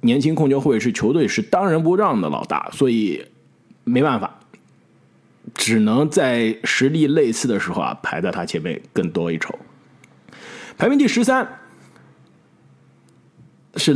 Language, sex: Chinese, male